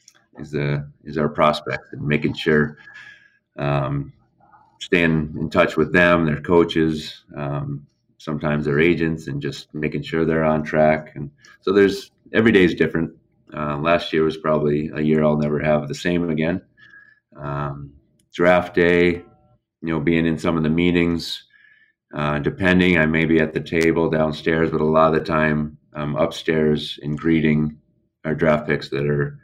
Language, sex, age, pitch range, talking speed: English, male, 30-49, 75-80 Hz, 165 wpm